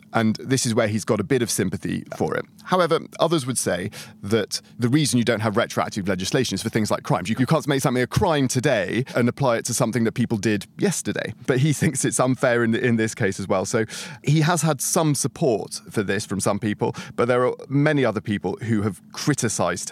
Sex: male